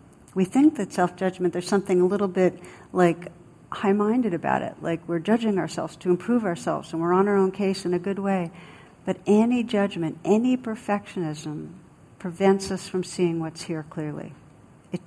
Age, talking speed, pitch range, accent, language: 60-79, 170 wpm, 165-190 Hz, American, English